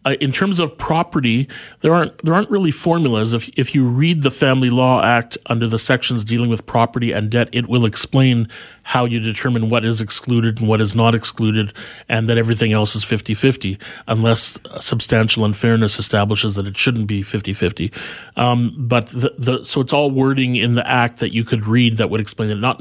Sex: male